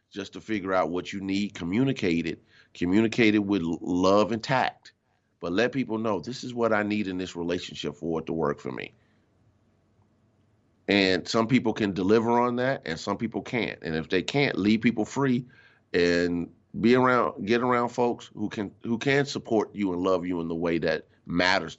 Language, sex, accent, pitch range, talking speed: English, male, American, 85-110 Hz, 195 wpm